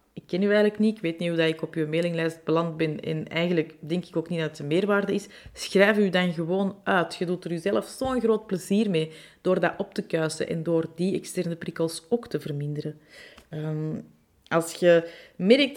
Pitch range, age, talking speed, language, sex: 165-200 Hz, 30-49, 215 wpm, Dutch, female